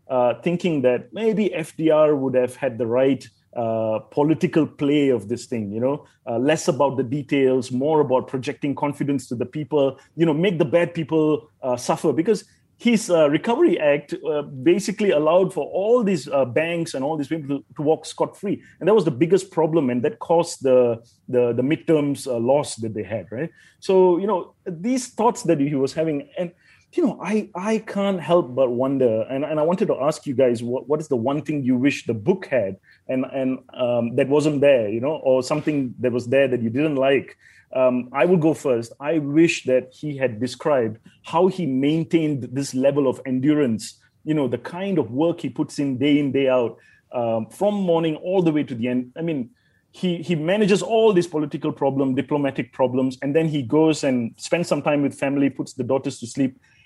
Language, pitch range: English, 130-165 Hz